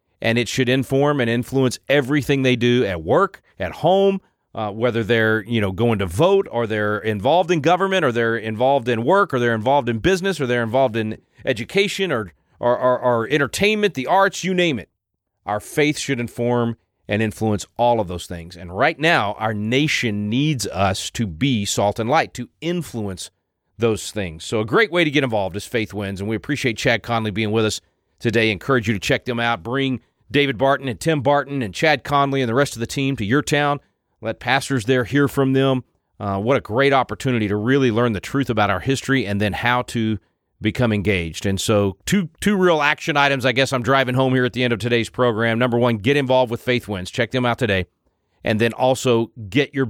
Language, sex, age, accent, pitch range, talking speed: English, male, 40-59, American, 110-140 Hz, 220 wpm